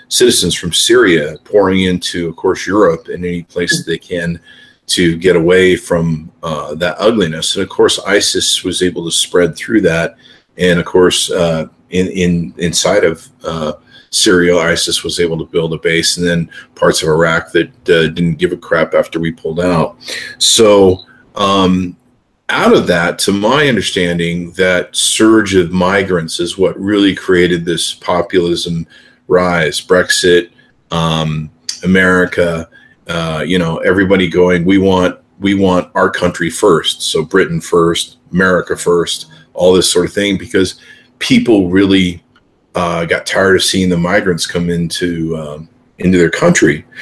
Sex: male